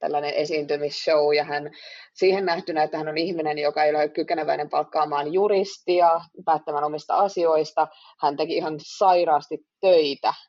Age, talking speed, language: 30-49, 135 wpm, Finnish